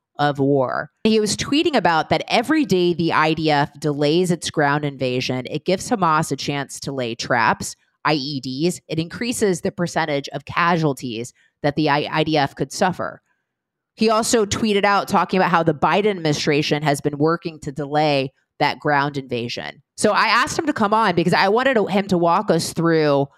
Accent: American